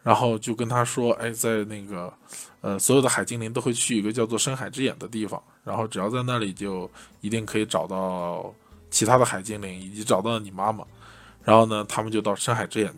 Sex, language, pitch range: male, Chinese, 100-120 Hz